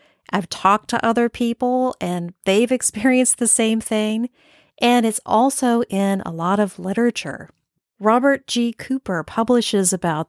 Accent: American